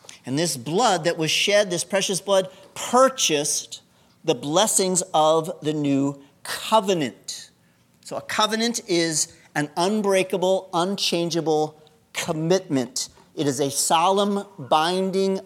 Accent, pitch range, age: American, 130-175 Hz, 40-59